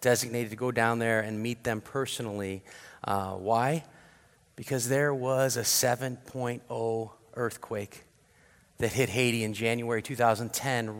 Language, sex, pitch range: English, male, 120-145 Hz